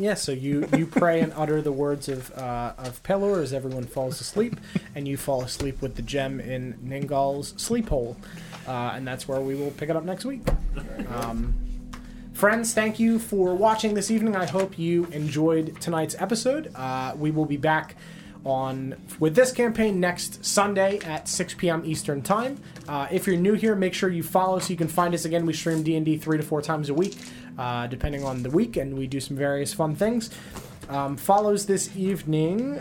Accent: American